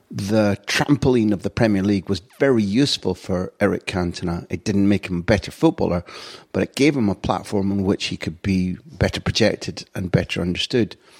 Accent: British